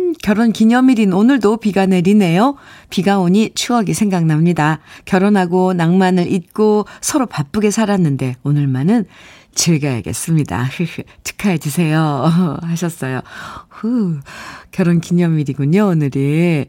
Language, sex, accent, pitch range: Korean, female, native, 160-220 Hz